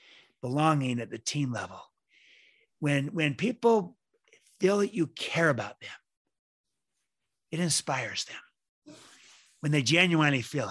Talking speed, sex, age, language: 120 wpm, male, 50-69, English